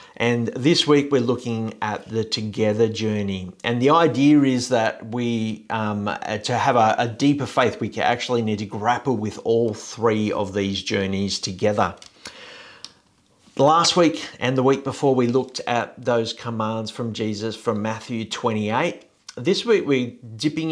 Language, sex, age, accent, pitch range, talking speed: English, male, 50-69, Australian, 105-130 Hz, 155 wpm